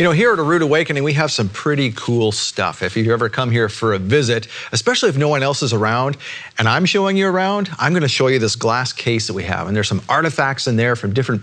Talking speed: 275 wpm